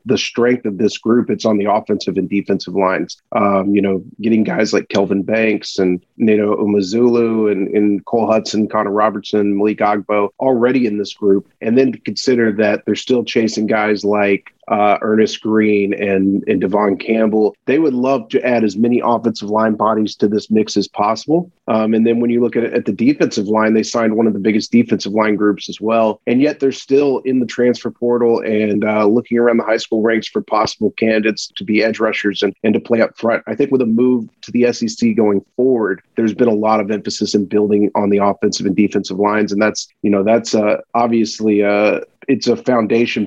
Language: English